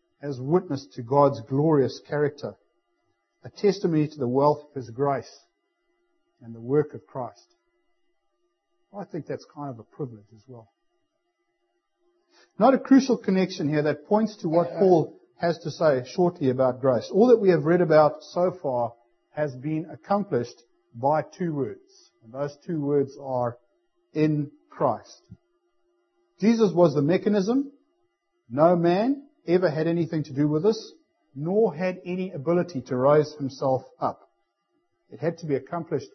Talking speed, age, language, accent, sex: 150 wpm, 50-69, English, Australian, male